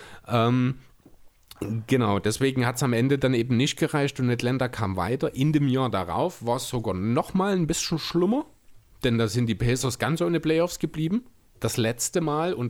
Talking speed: 180 wpm